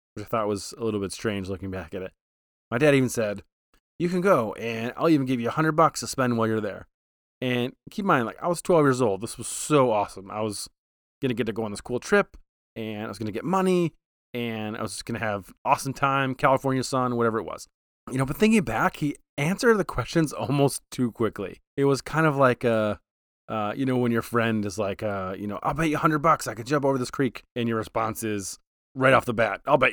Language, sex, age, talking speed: English, male, 30-49, 255 wpm